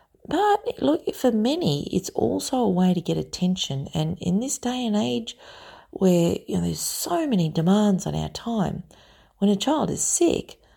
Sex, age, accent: female, 40-59, Australian